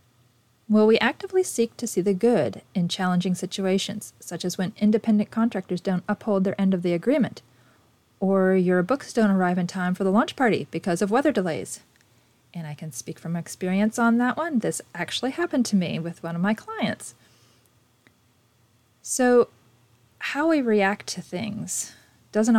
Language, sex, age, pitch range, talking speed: English, female, 30-49, 160-220 Hz, 170 wpm